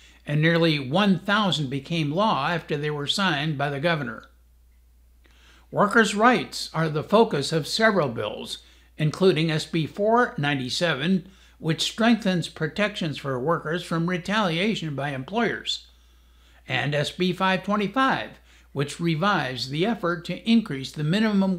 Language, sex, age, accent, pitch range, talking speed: English, male, 60-79, American, 130-195 Hz, 120 wpm